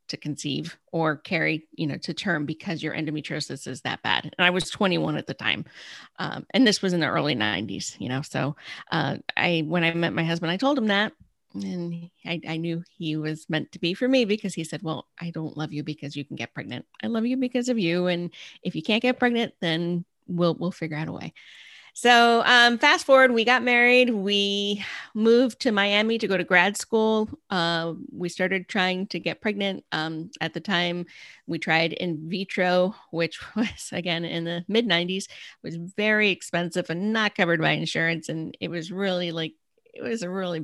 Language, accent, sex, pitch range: English, American, female, 160-205 Hz